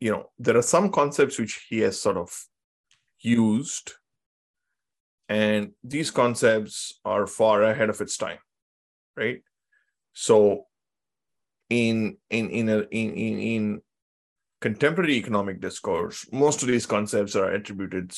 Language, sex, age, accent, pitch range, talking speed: Hindi, male, 20-39, native, 100-120 Hz, 130 wpm